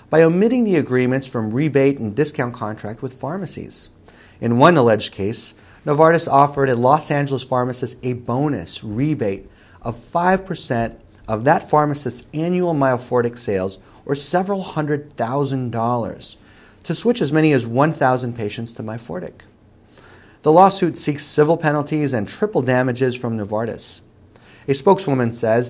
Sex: male